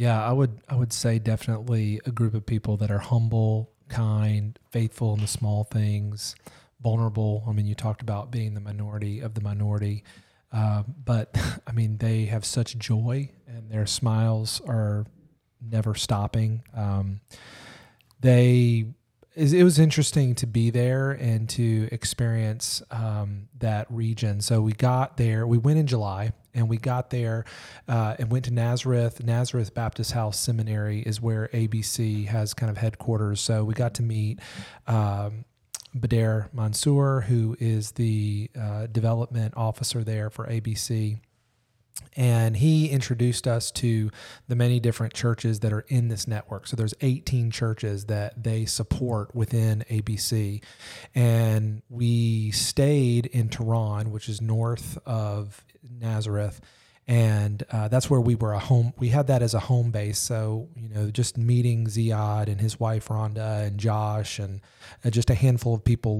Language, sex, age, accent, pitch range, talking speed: English, male, 30-49, American, 110-120 Hz, 155 wpm